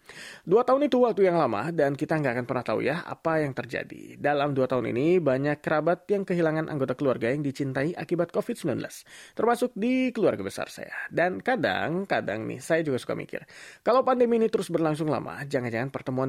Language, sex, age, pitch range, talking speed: German, male, 30-49, 135-195 Hz, 185 wpm